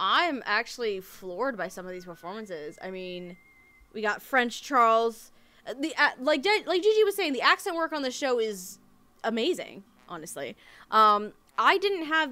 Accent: American